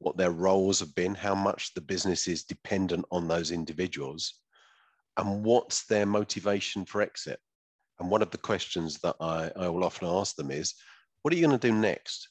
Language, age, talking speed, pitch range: English, 40-59, 195 wpm, 90-105 Hz